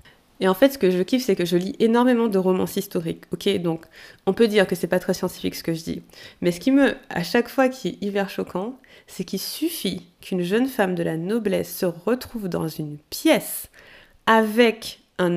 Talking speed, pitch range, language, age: 220 wpm, 175-215 Hz, French, 20-39